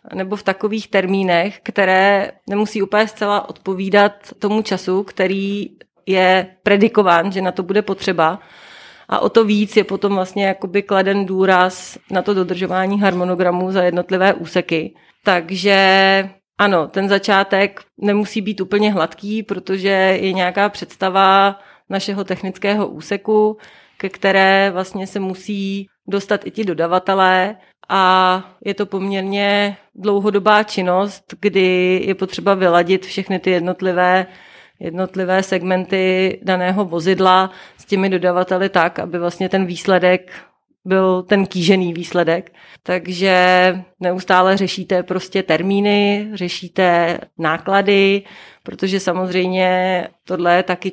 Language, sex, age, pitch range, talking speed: Czech, female, 30-49, 180-195 Hz, 120 wpm